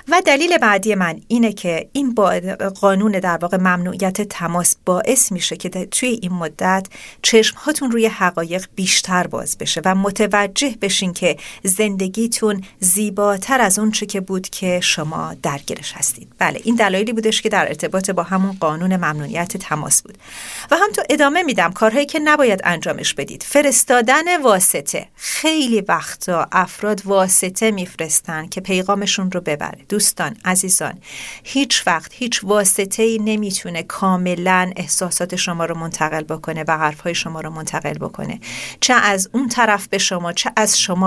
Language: Persian